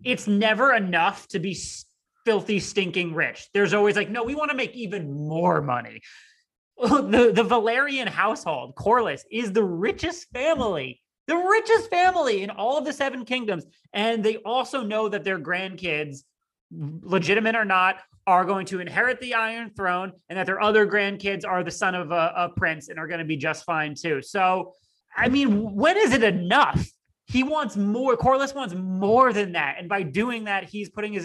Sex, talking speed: male, 185 wpm